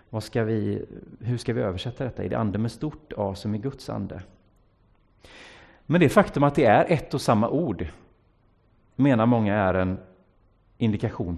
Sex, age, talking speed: male, 30-49, 175 wpm